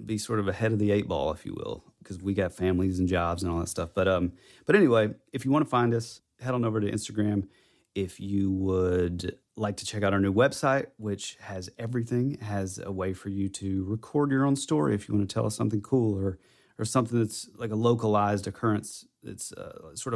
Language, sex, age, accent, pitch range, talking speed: English, male, 30-49, American, 95-115 Hz, 230 wpm